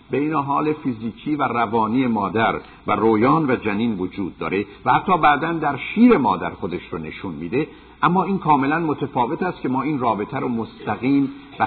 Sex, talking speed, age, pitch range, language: male, 170 wpm, 50-69, 105-145 Hz, Persian